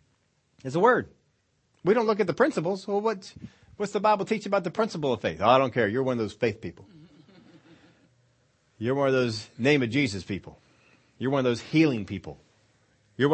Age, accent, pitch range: 40-59, American, 120-170 Hz